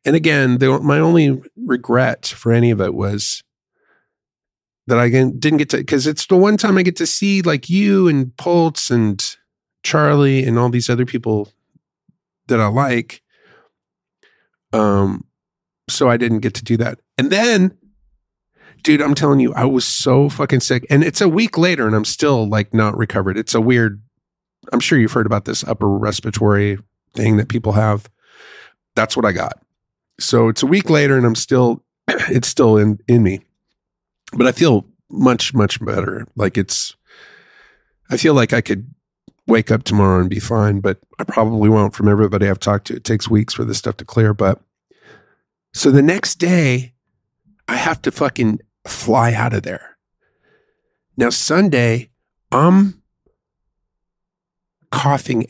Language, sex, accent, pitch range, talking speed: English, male, American, 110-145 Hz, 165 wpm